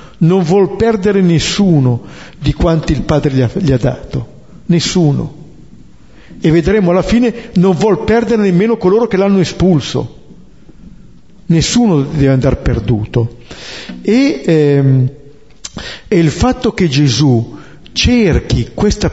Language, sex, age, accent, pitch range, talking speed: Italian, male, 50-69, native, 140-200 Hz, 120 wpm